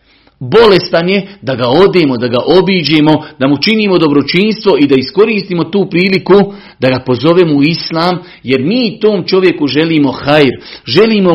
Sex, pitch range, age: male, 135-175 Hz, 40-59